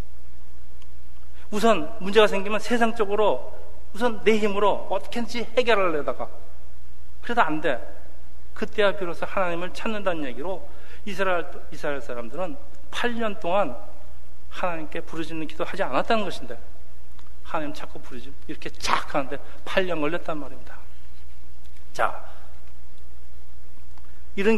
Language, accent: Korean, native